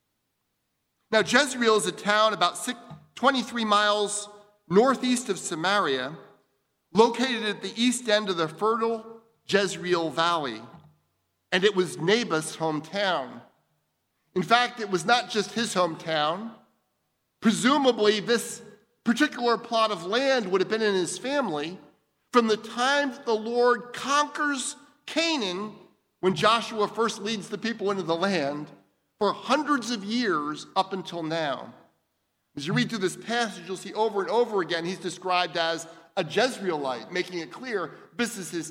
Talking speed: 145 wpm